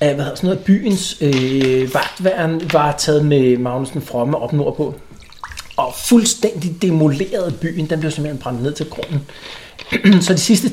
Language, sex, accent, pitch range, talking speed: Danish, male, native, 140-185 Hz, 170 wpm